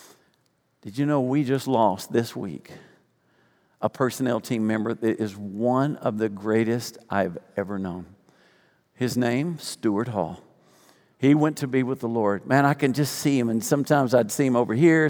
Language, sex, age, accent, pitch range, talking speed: English, male, 50-69, American, 110-150 Hz, 180 wpm